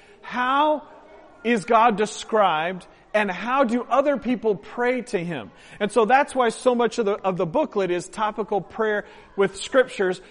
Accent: American